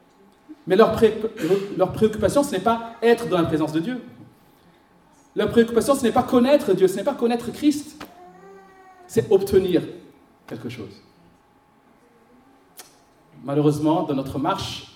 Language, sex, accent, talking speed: French, male, French, 135 wpm